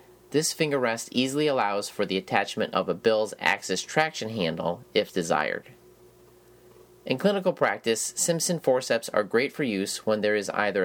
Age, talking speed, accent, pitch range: 30-49, 160 wpm, American, 95-145 Hz